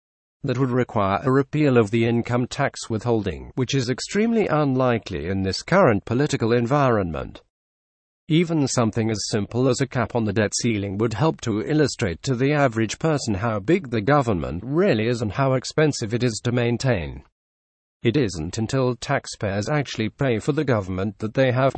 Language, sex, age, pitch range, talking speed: English, male, 50-69, 100-135 Hz, 175 wpm